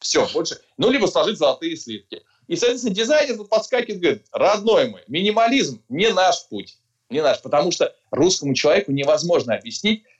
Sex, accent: male, native